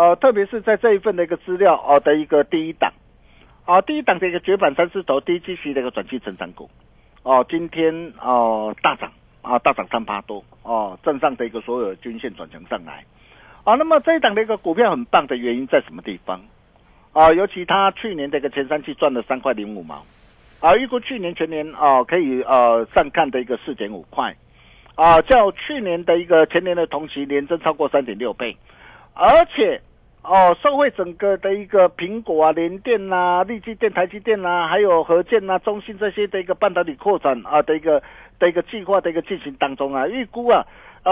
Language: Chinese